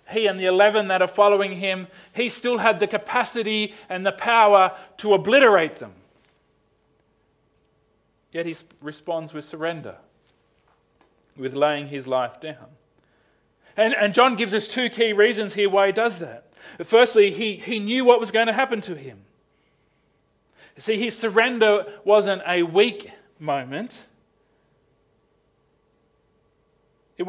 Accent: Australian